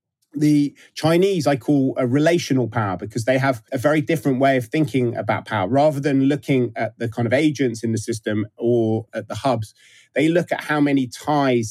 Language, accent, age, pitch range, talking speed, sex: English, British, 30-49, 115-135 Hz, 200 wpm, male